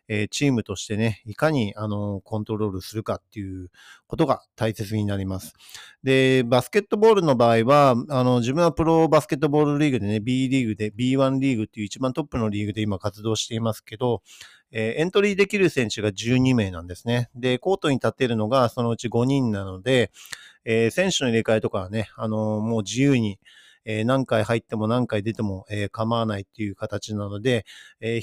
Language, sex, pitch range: Japanese, male, 110-135 Hz